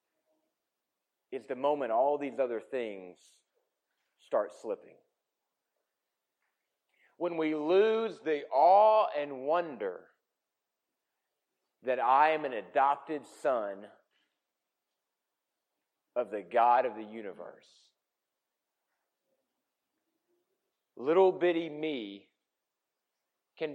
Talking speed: 80 wpm